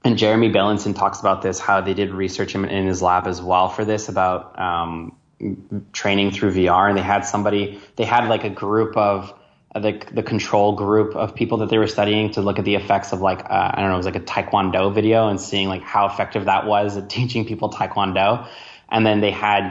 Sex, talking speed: male, 225 wpm